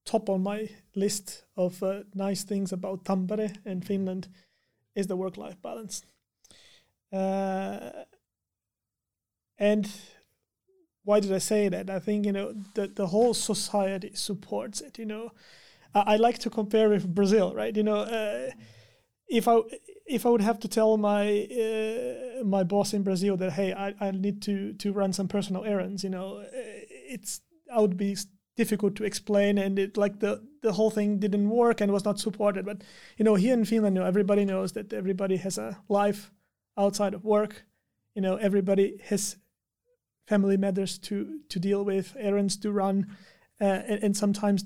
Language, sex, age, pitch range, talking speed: Finnish, male, 30-49, 195-215 Hz, 170 wpm